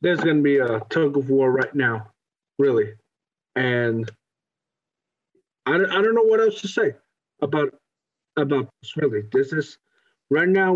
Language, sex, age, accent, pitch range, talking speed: English, male, 50-69, American, 135-190 Hz, 160 wpm